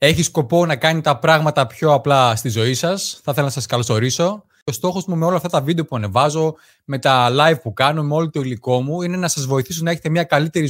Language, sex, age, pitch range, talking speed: Greek, male, 20-39, 130-170 Hz, 245 wpm